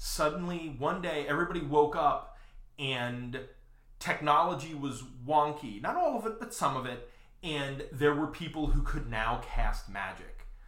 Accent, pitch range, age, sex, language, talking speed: American, 120-150 Hz, 30-49, male, English, 150 wpm